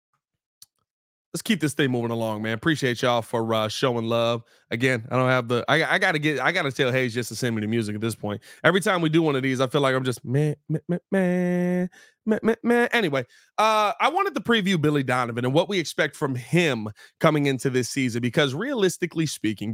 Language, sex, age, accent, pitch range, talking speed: English, male, 30-49, American, 125-175 Hz, 235 wpm